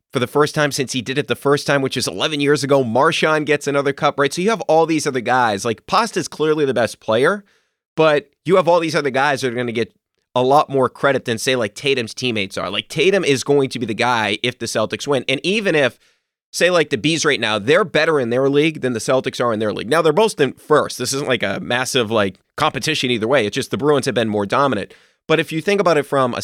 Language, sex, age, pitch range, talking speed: English, male, 30-49, 120-145 Hz, 270 wpm